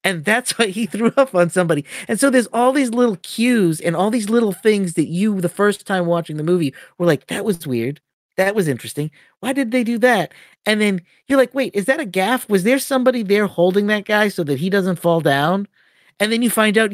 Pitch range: 170-220 Hz